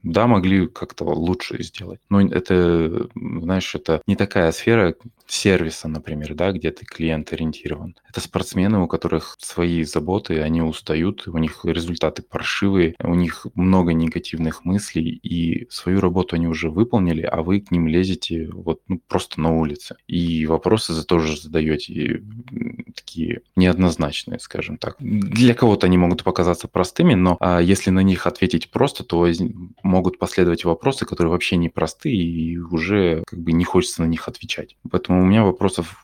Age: 20-39